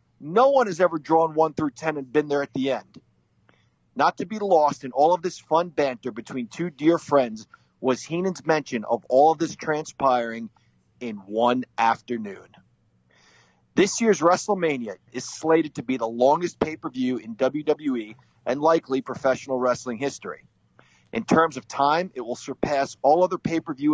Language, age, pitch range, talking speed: English, 40-59, 120-165 Hz, 165 wpm